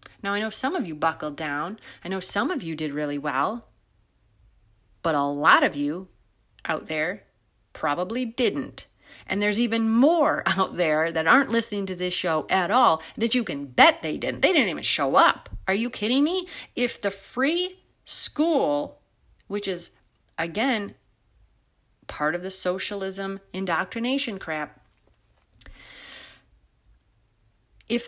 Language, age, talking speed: English, 30-49, 145 wpm